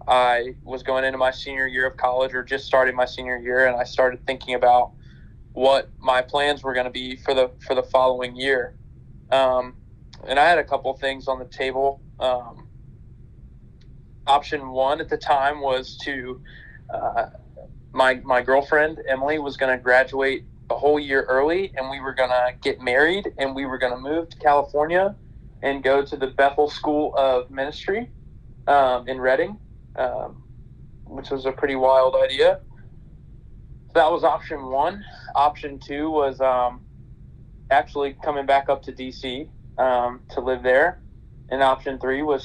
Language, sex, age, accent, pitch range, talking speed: English, male, 20-39, American, 125-140 Hz, 170 wpm